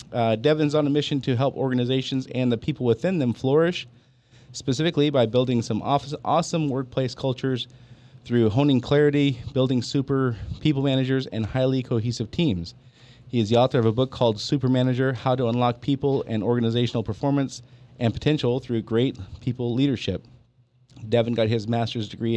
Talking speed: 160 wpm